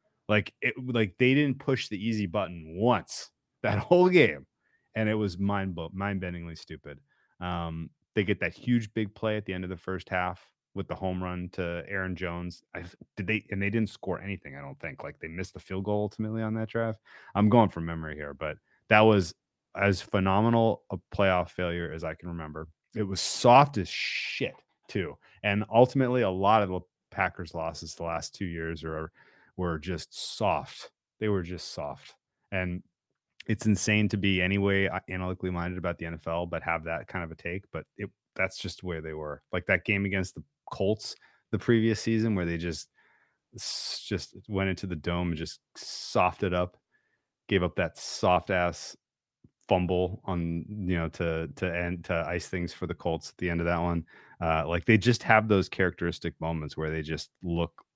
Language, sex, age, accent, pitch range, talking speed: English, male, 30-49, American, 85-105 Hz, 195 wpm